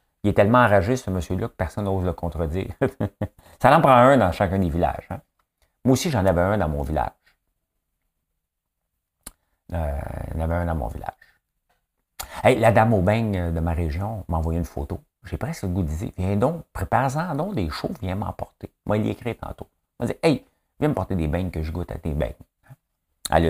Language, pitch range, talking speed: French, 80-105 Hz, 210 wpm